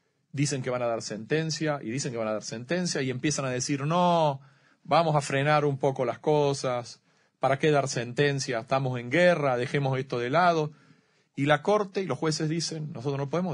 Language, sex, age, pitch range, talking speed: Spanish, male, 40-59, 130-165 Hz, 205 wpm